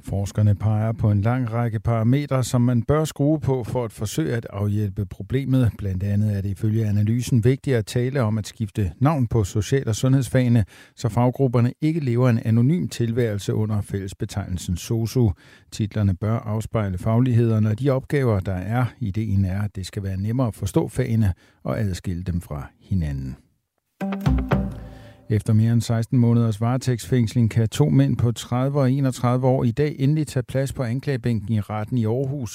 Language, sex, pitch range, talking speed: Danish, male, 105-130 Hz, 175 wpm